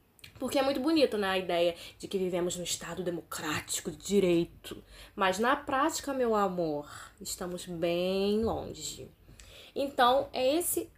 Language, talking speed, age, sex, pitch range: Portuguese, 140 wpm, 10-29, female, 175-225 Hz